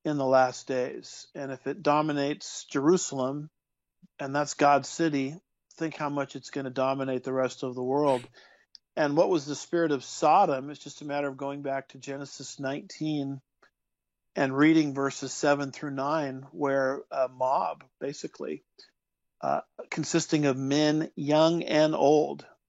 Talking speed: 155 wpm